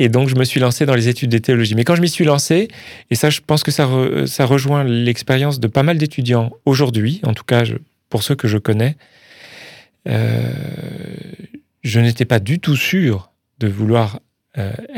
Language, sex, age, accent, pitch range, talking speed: French, male, 40-59, French, 110-140 Hz, 205 wpm